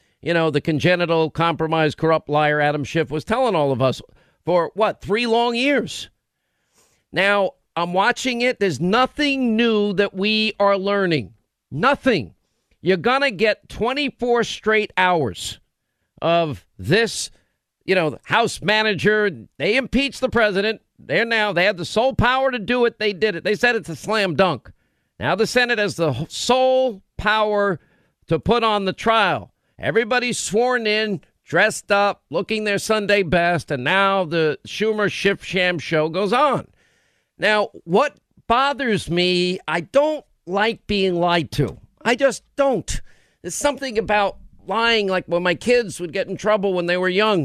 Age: 50-69